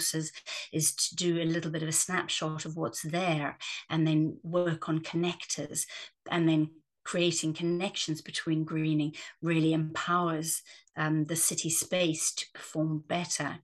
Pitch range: 155-175 Hz